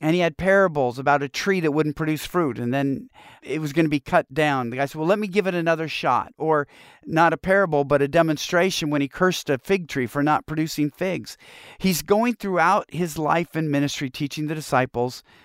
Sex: male